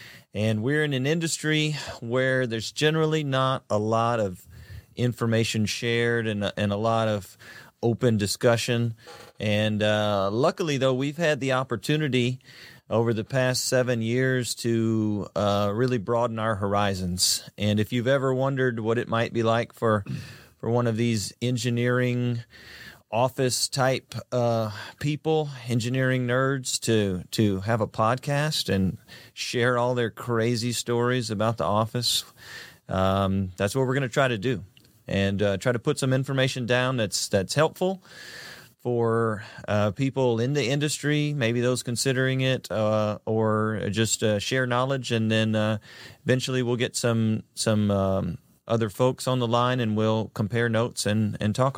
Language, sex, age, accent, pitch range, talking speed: English, male, 30-49, American, 110-130 Hz, 155 wpm